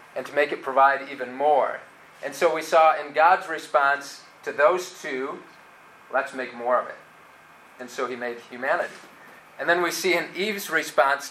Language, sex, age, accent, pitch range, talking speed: English, male, 30-49, American, 145-180 Hz, 180 wpm